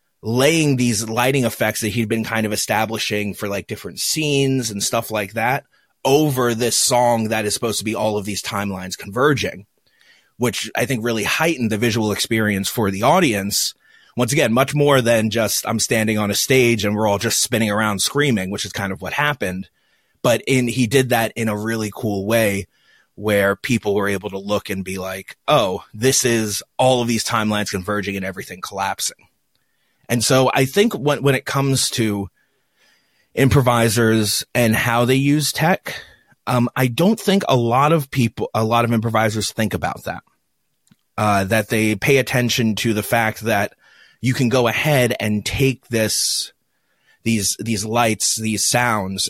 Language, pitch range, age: English, 105-125 Hz, 30-49